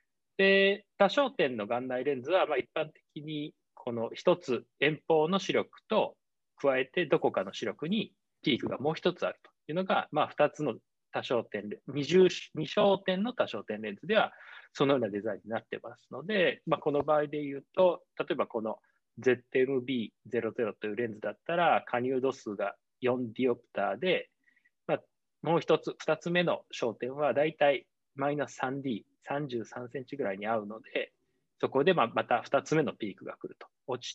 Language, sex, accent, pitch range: Japanese, male, native, 130-185 Hz